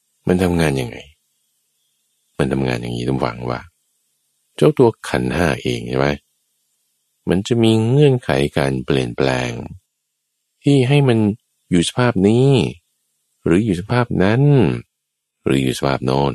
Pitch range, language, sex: 70-105 Hz, Thai, male